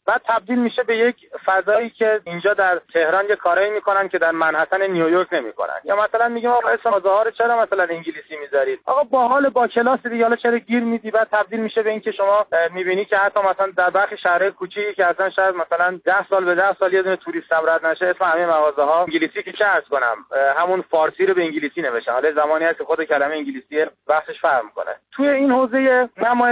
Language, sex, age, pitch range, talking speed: Persian, male, 30-49, 160-215 Hz, 210 wpm